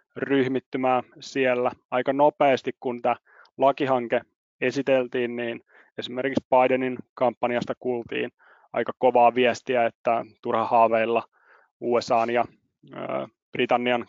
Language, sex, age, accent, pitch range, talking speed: Finnish, male, 30-49, native, 120-130 Hz, 95 wpm